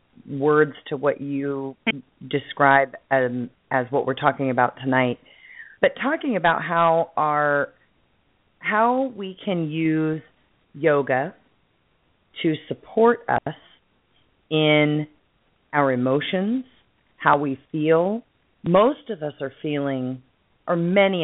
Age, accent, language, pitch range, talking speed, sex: 30-49, American, English, 135-180 Hz, 105 wpm, female